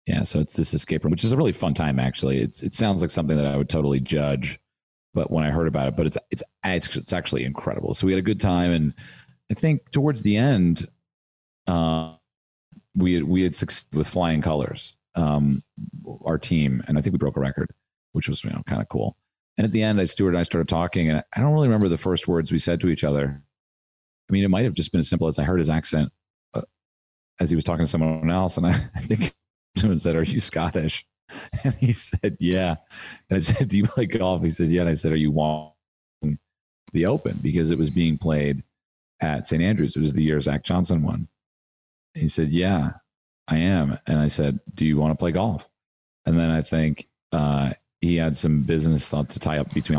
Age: 40-59